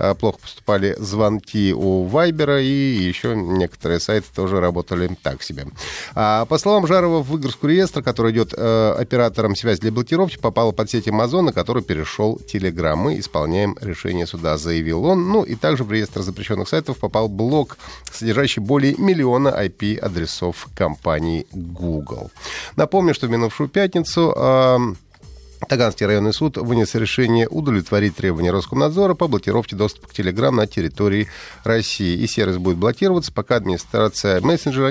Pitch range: 95-135 Hz